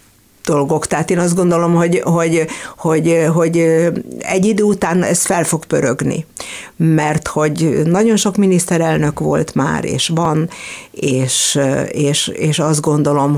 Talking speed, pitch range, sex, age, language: 115 wpm, 145-180 Hz, female, 60-79, Hungarian